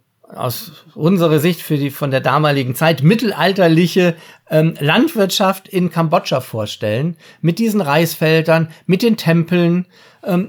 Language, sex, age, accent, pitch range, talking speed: German, male, 40-59, German, 140-170 Hz, 125 wpm